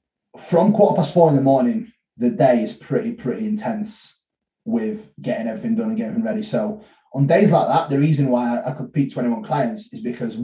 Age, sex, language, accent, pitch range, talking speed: 30-49, male, English, British, 130-215 Hz, 205 wpm